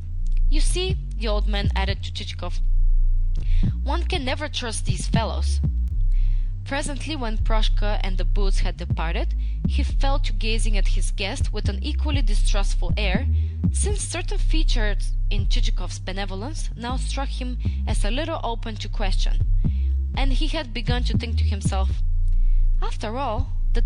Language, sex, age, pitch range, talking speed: English, female, 20-39, 80-100 Hz, 150 wpm